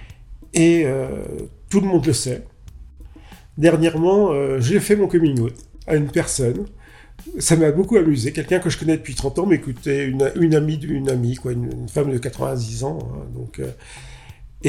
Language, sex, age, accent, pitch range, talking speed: French, male, 40-59, French, 125-165 Hz, 180 wpm